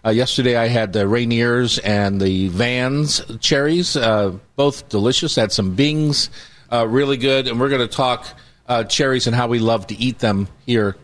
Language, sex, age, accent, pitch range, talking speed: English, male, 40-59, American, 110-145 Hz, 185 wpm